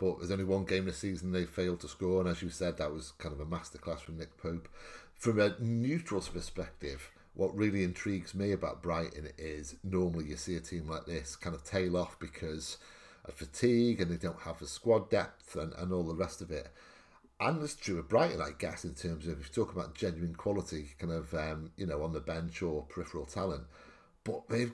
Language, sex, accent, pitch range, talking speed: English, male, British, 80-100 Hz, 225 wpm